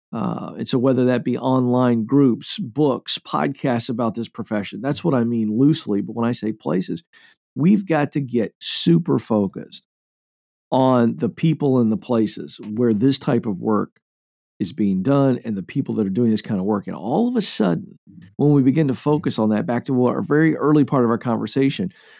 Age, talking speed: 50-69, 200 wpm